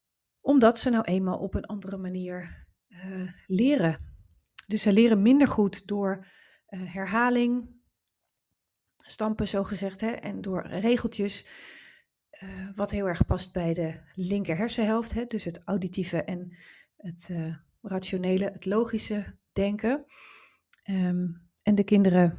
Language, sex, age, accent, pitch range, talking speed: Dutch, female, 30-49, Dutch, 180-215 Hz, 120 wpm